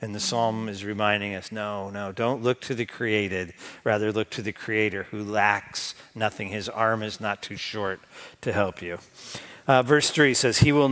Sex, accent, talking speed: male, American, 200 wpm